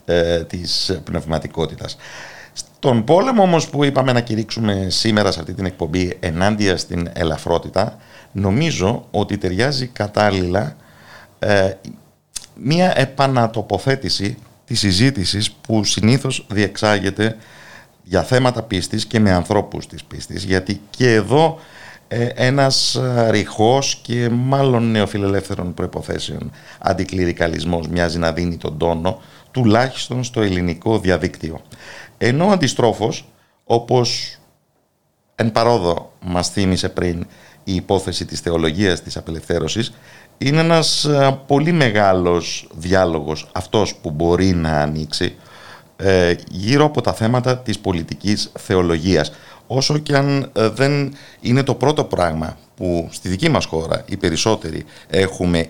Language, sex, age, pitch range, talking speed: Greek, male, 50-69, 90-125 Hz, 115 wpm